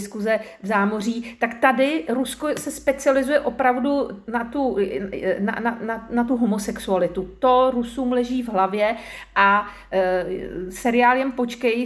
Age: 40-59